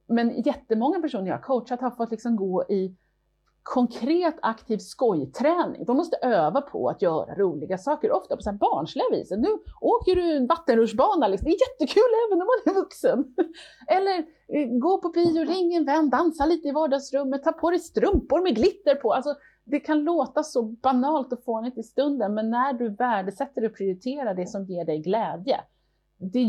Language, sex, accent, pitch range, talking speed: Swedish, female, native, 195-300 Hz, 185 wpm